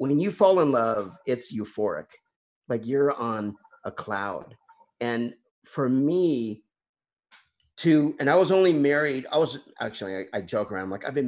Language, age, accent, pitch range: English, 50-69, American, 110-145 Hz